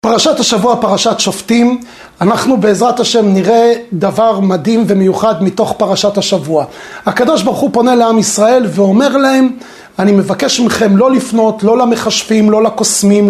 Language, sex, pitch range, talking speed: Hebrew, male, 195-245 Hz, 140 wpm